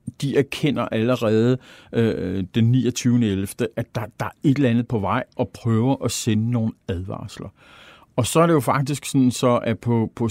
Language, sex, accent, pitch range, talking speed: Danish, male, native, 110-135 Hz, 185 wpm